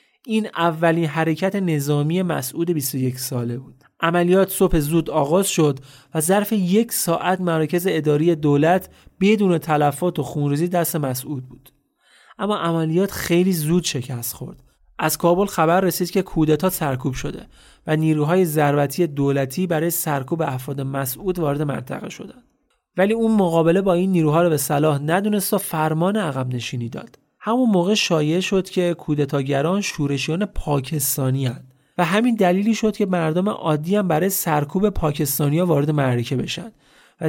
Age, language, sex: 30-49, Persian, male